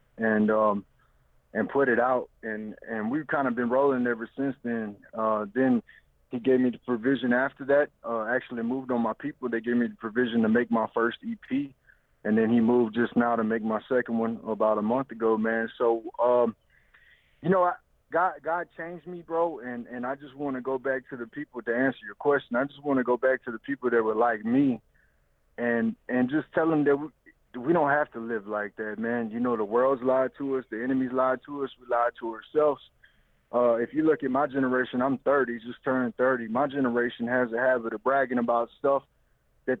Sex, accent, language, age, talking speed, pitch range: male, American, English, 30-49, 225 wpm, 115-140 Hz